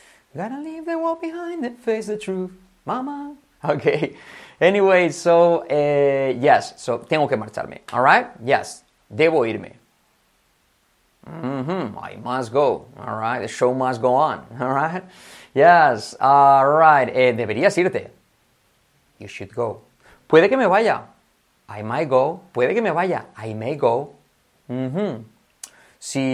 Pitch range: 130-160 Hz